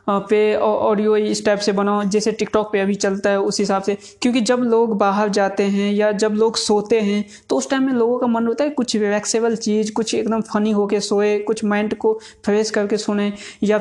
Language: Hindi